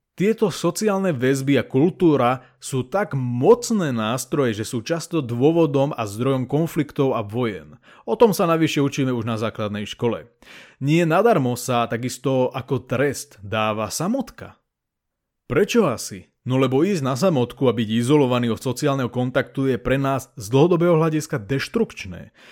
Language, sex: Slovak, male